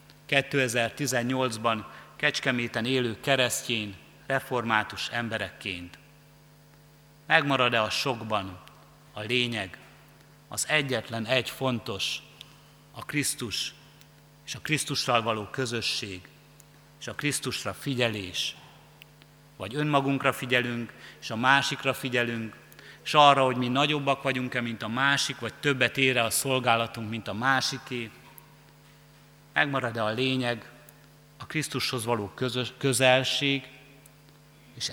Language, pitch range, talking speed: Hungarian, 115-140 Hz, 100 wpm